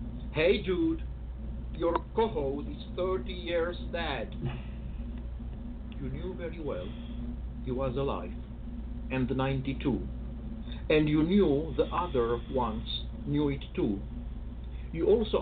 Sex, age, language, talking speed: male, 50-69, English, 110 wpm